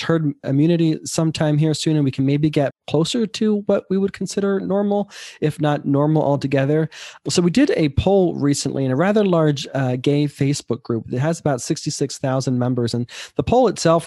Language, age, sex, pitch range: English, 20-39, male, 125-155 Hz